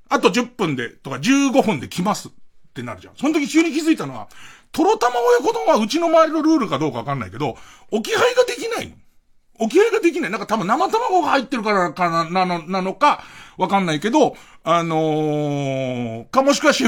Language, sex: Japanese, male